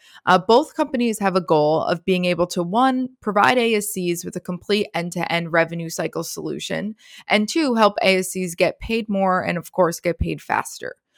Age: 20-39